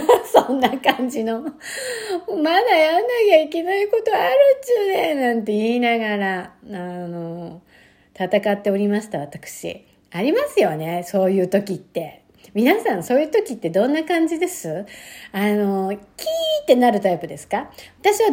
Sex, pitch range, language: female, 190-280 Hz, Japanese